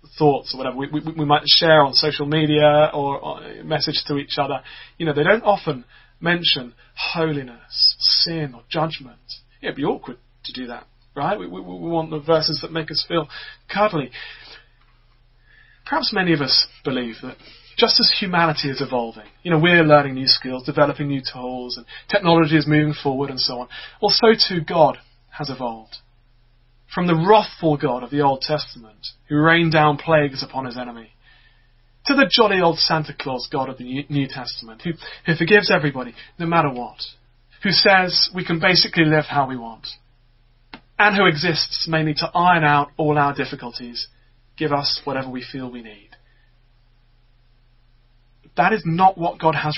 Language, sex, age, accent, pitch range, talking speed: English, male, 30-49, British, 120-160 Hz, 175 wpm